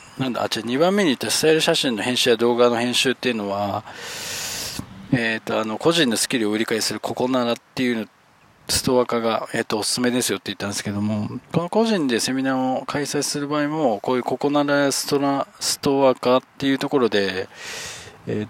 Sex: male